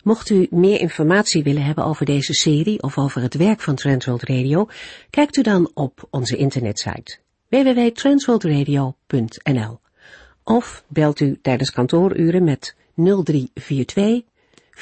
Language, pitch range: Dutch, 130-185 Hz